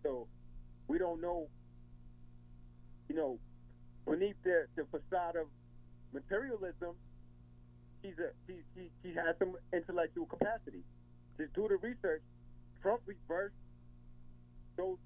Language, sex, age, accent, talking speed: English, male, 30-49, American, 110 wpm